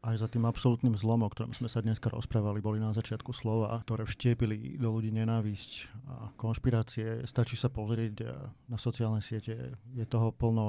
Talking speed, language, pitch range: 170 wpm, Slovak, 110-120 Hz